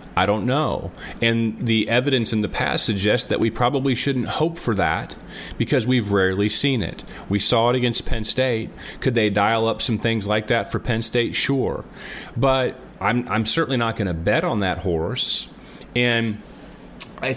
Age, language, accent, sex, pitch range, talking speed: 40-59, English, American, male, 105-130 Hz, 185 wpm